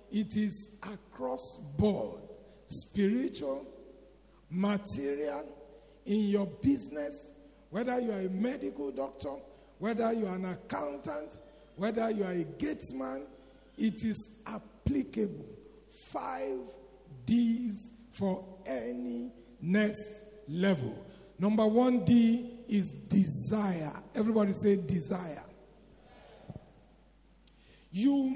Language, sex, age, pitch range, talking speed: English, male, 50-69, 155-220 Hz, 90 wpm